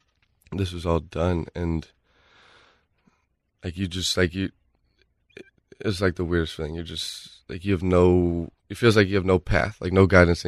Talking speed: 180 wpm